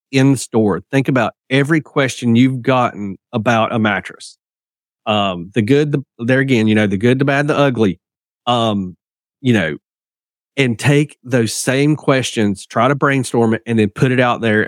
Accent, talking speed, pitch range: American, 180 wpm, 110-140 Hz